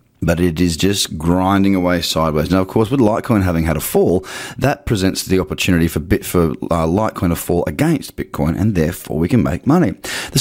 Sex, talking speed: male, 210 wpm